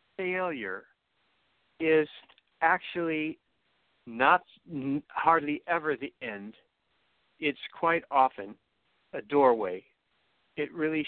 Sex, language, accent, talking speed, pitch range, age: male, English, American, 80 wpm, 125-155 Hz, 60-79